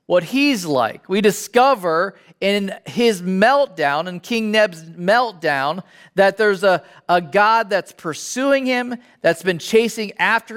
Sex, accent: male, American